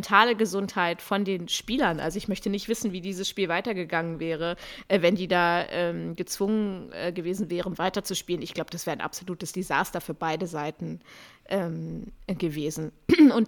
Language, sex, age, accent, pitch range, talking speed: German, female, 20-39, German, 175-210 Hz, 160 wpm